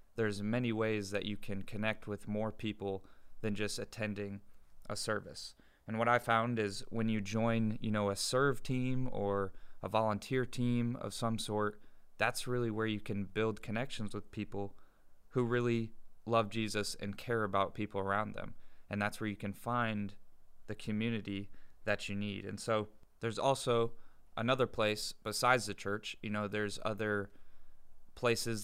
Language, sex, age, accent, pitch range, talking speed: English, male, 20-39, American, 100-115 Hz, 165 wpm